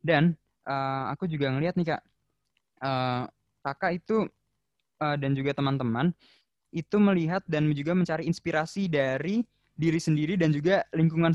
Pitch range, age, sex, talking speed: 130-165 Hz, 20-39, male, 135 wpm